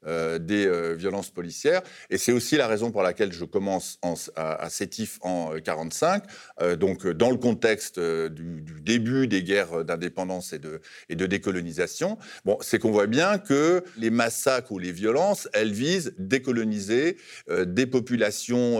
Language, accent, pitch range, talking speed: French, French, 95-125 Hz, 175 wpm